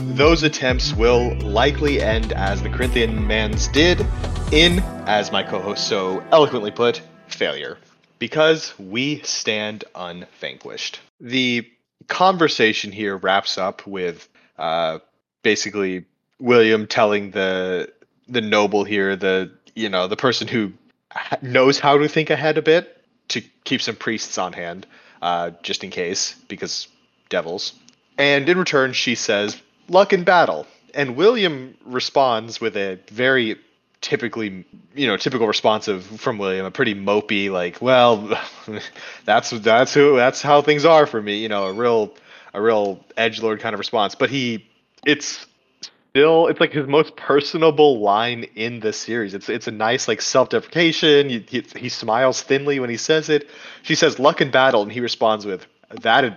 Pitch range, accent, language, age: 105-145 Hz, American, English, 30-49